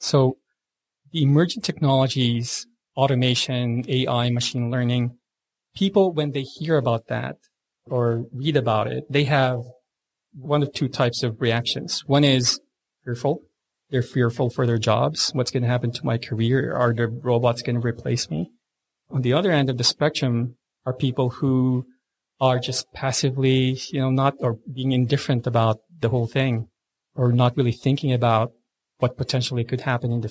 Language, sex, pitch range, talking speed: English, male, 120-140 Hz, 160 wpm